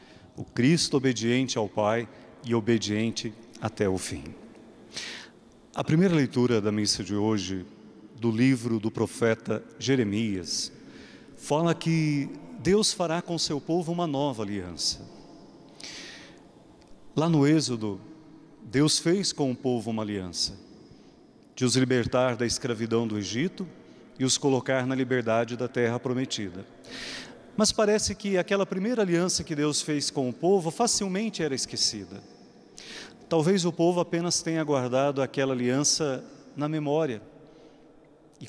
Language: Portuguese